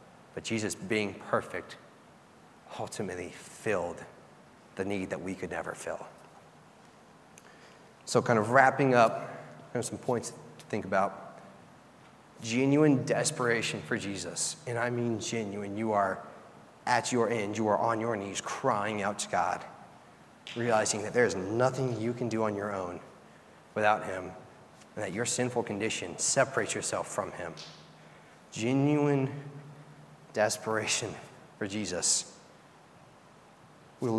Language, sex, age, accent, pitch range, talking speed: English, male, 30-49, American, 100-120 Hz, 130 wpm